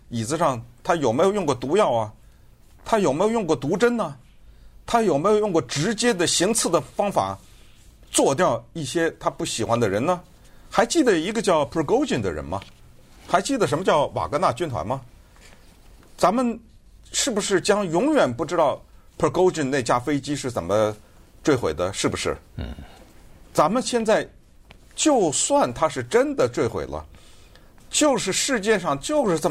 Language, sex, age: Chinese, male, 50-69